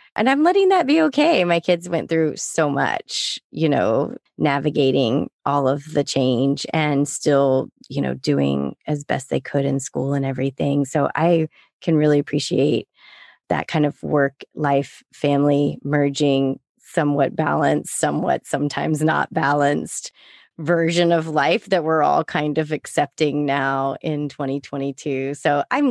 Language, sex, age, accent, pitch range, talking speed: English, female, 30-49, American, 145-175 Hz, 150 wpm